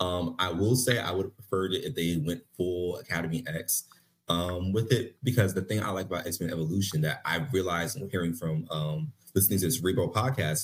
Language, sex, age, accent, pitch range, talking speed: English, male, 30-49, American, 85-120 Hz, 215 wpm